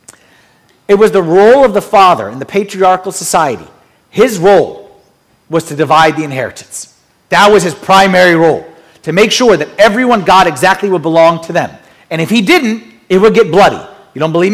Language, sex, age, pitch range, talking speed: English, male, 40-59, 185-270 Hz, 185 wpm